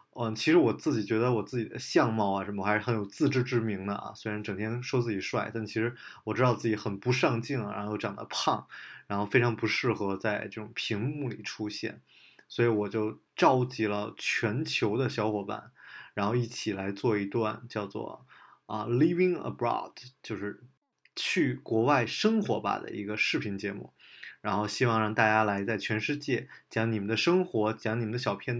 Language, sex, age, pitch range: Chinese, male, 20-39, 105-130 Hz